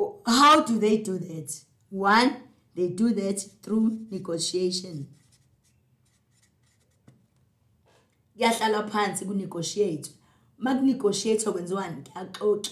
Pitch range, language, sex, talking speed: 170-220 Hz, English, female, 80 wpm